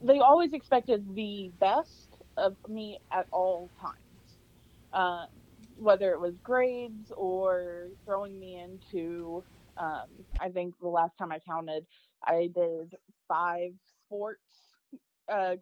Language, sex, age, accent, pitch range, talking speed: English, female, 20-39, American, 175-215 Hz, 125 wpm